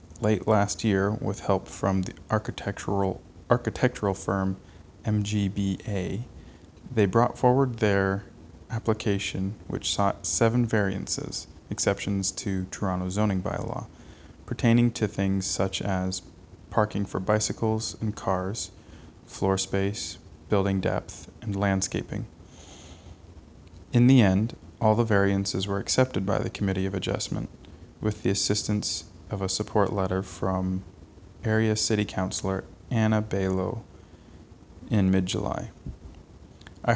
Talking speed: 115 wpm